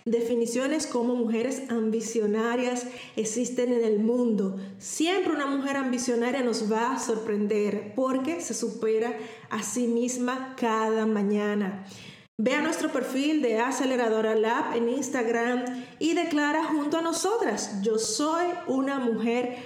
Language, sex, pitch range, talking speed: Spanish, female, 225-265 Hz, 125 wpm